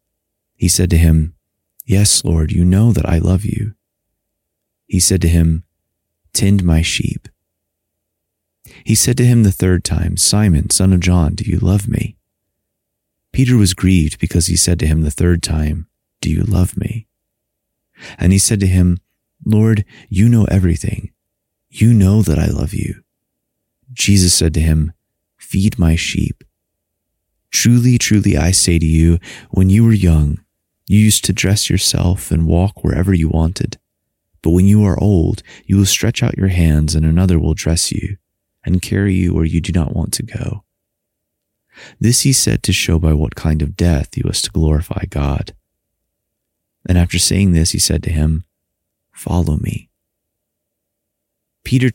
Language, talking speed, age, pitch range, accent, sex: English, 165 wpm, 30-49, 80-100 Hz, American, male